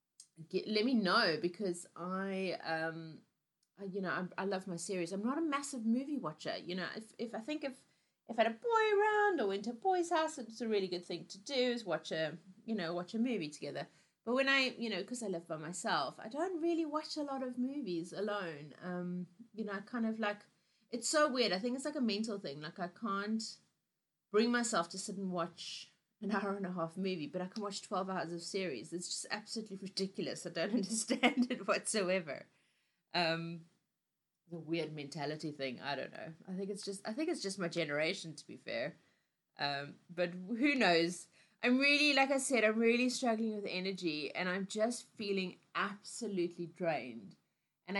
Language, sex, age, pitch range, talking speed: English, female, 30-49, 175-235 Hz, 205 wpm